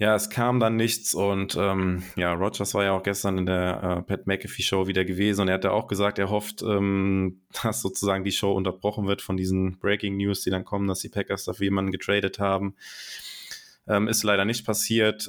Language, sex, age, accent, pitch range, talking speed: German, male, 20-39, German, 95-105 Hz, 215 wpm